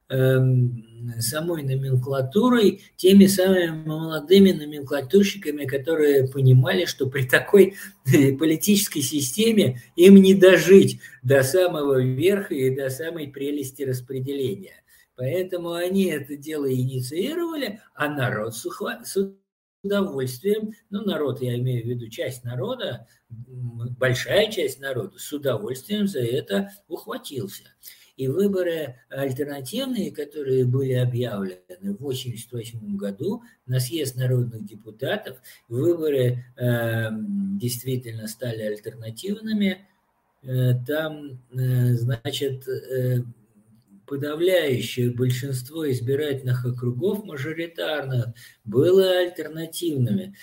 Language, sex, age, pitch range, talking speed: Russian, male, 50-69, 125-175 Hz, 95 wpm